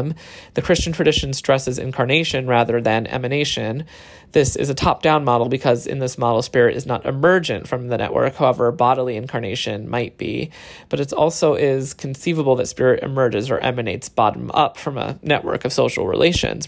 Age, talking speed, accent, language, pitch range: 30-49, 165 wpm, American, English, 125-150 Hz